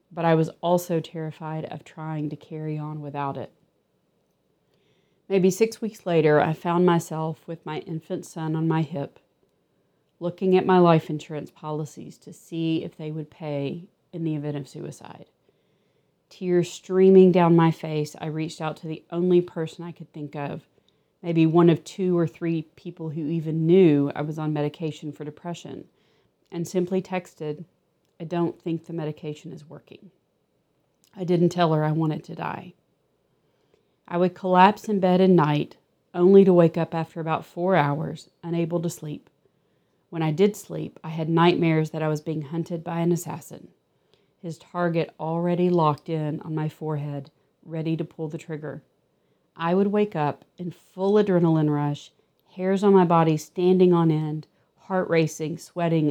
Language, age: English, 40-59